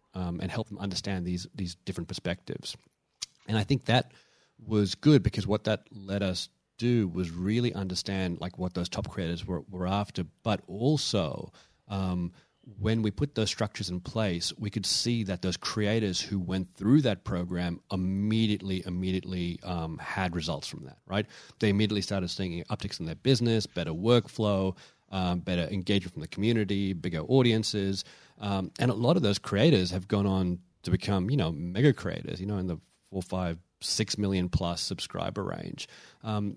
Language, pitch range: English, 90-110 Hz